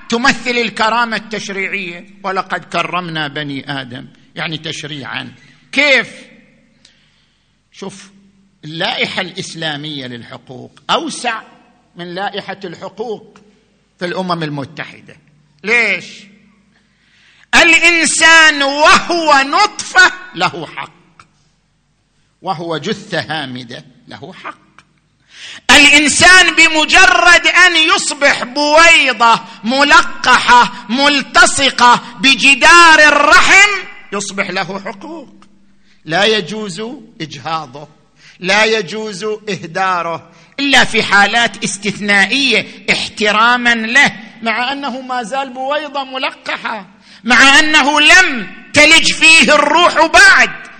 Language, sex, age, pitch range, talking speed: Arabic, male, 50-69, 180-275 Hz, 80 wpm